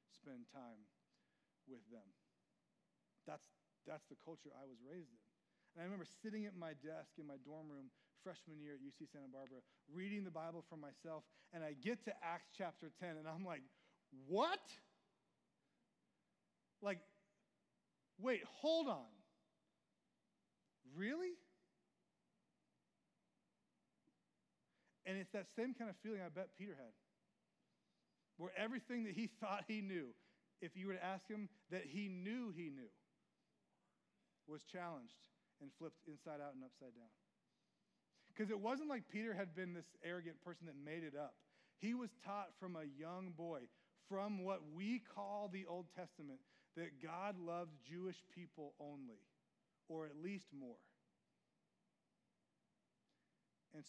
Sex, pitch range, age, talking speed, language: male, 155-205 Hz, 30-49, 140 wpm, English